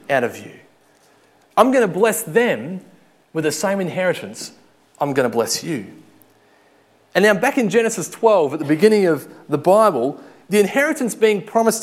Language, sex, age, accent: English, male, 30-49, Australian